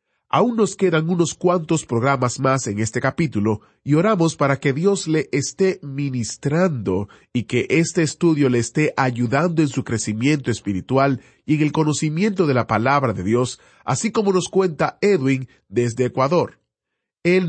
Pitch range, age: 120-170 Hz, 40-59